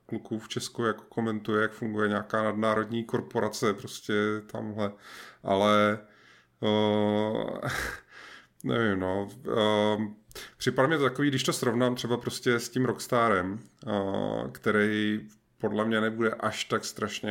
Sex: male